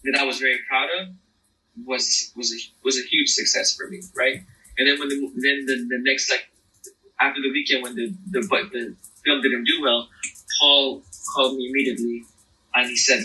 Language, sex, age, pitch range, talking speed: English, male, 30-49, 120-145 Hz, 200 wpm